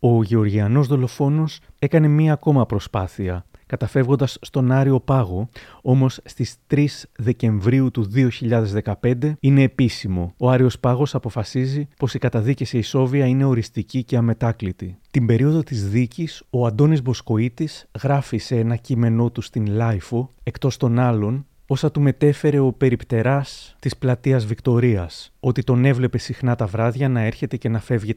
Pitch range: 110-135 Hz